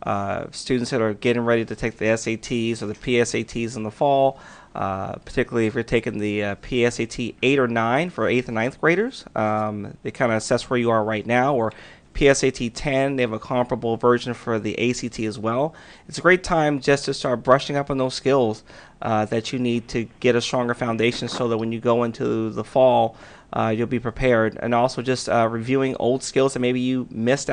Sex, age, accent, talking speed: male, 30-49, American, 215 wpm